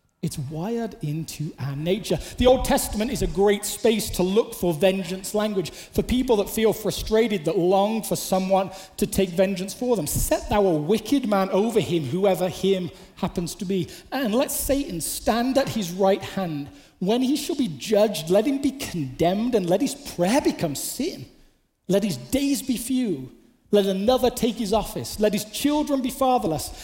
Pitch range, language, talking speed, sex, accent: 165-230 Hz, English, 180 wpm, male, British